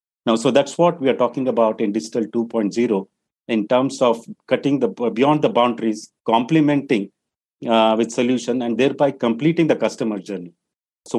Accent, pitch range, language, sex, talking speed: Indian, 110-130 Hz, English, male, 160 wpm